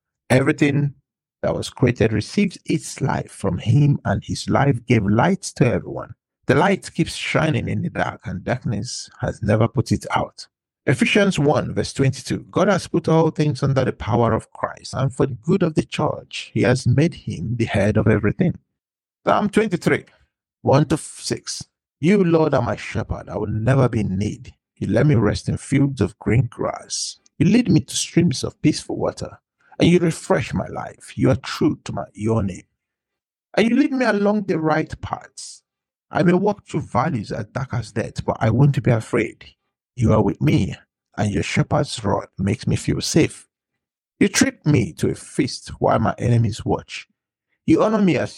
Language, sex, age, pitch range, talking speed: English, male, 50-69, 105-155 Hz, 190 wpm